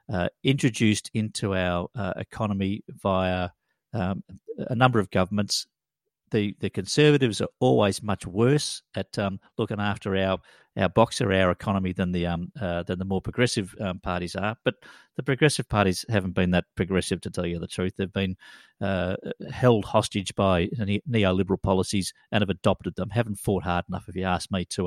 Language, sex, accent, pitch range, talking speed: English, male, Australian, 90-110 Hz, 175 wpm